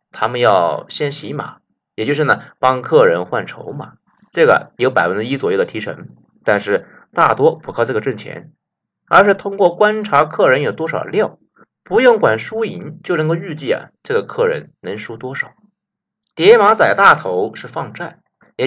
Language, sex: Chinese, male